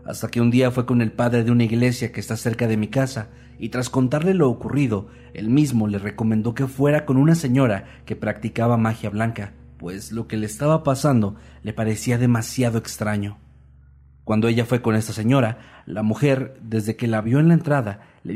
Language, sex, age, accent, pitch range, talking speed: Spanish, male, 40-59, Mexican, 105-130 Hz, 200 wpm